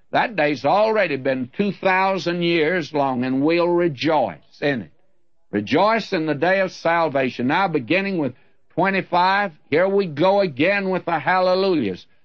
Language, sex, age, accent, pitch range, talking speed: English, male, 60-79, American, 160-195 Hz, 140 wpm